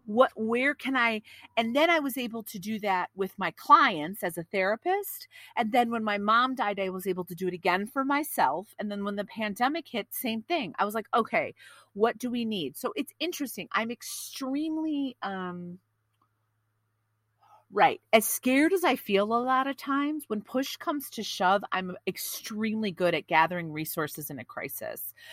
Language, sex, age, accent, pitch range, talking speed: English, female, 40-59, American, 150-235 Hz, 185 wpm